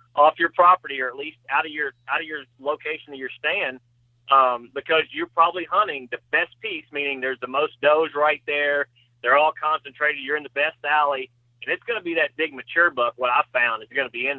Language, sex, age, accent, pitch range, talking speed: English, male, 40-59, American, 130-160 Hz, 235 wpm